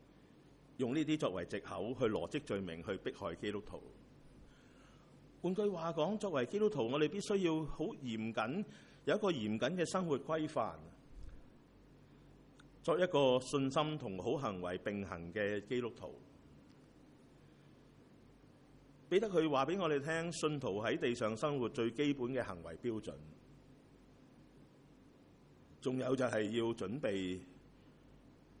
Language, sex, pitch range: English, male, 105-155 Hz